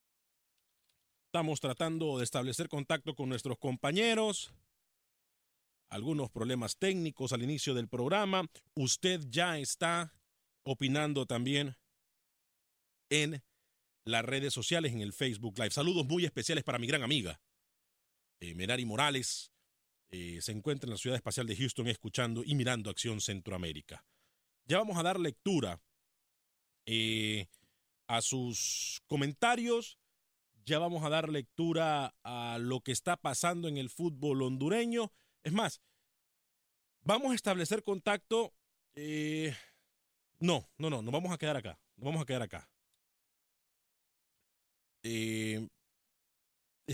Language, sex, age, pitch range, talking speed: Spanish, male, 40-59, 110-160 Hz, 125 wpm